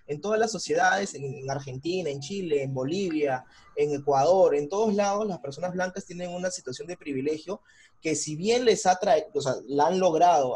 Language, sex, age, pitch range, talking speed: Spanish, male, 20-39, 140-190 Hz, 190 wpm